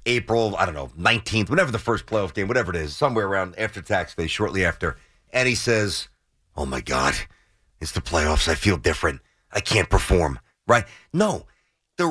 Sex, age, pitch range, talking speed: male, 40-59, 105-160 Hz, 190 wpm